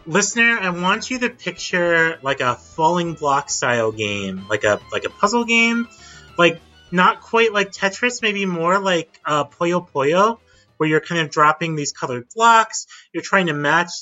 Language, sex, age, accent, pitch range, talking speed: English, male, 30-49, American, 150-190 Hz, 175 wpm